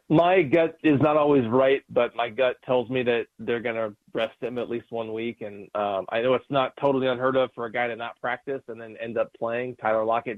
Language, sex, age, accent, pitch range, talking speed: English, male, 30-49, American, 115-135 Hz, 250 wpm